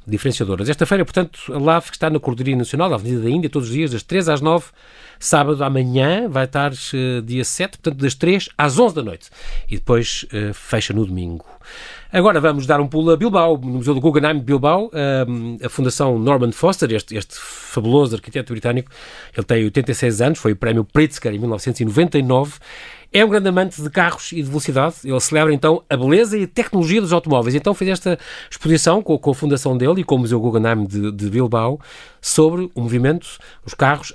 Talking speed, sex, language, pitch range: 200 wpm, male, Portuguese, 125-160 Hz